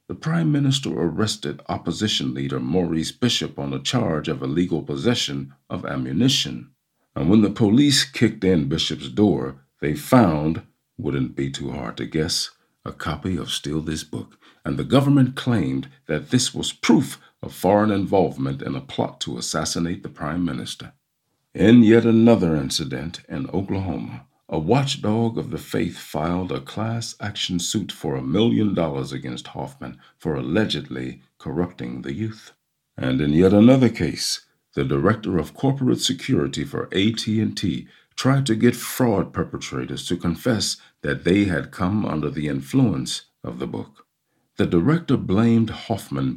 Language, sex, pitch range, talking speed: English, male, 70-115 Hz, 150 wpm